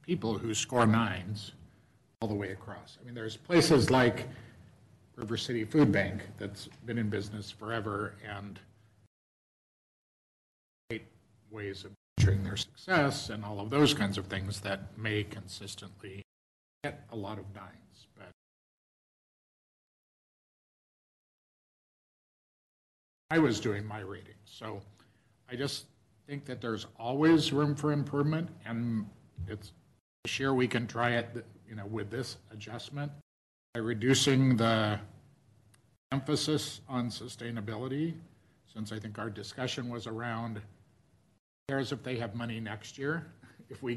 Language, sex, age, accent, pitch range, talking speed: English, male, 50-69, American, 105-125 Hz, 130 wpm